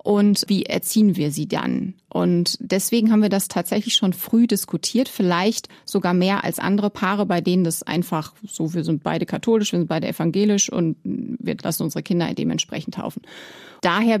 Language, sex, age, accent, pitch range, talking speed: German, female, 30-49, German, 175-215 Hz, 175 wpm